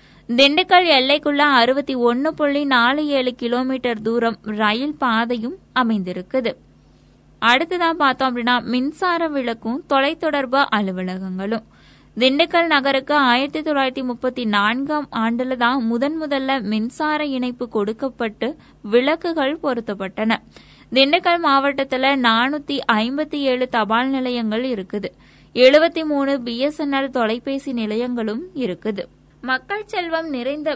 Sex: female